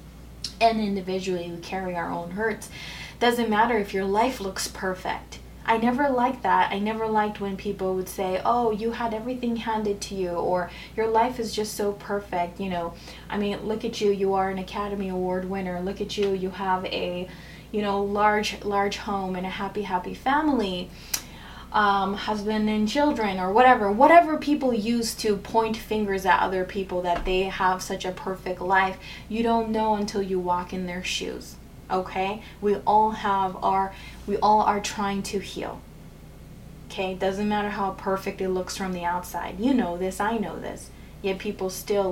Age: 20-39